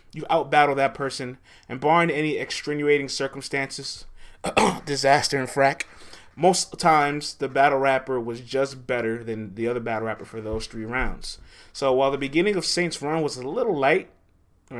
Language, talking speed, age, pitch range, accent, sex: English, 165 wpm, 20-39, 85-140 Hz, American, male